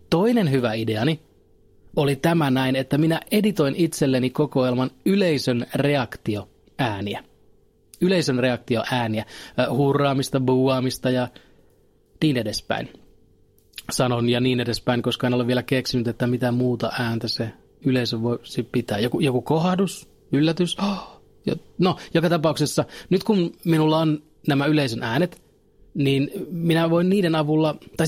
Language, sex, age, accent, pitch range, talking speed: Finnish, male, 30-49, native, 125-165 Hz, 120 wpm